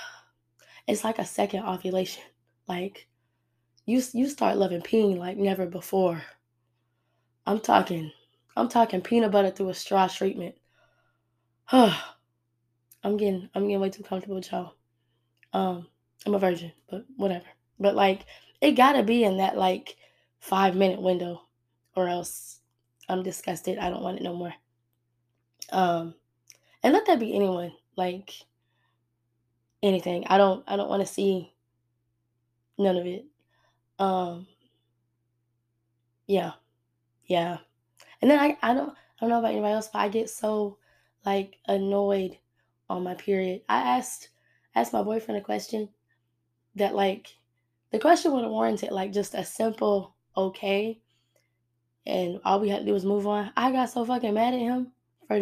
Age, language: 10-29, English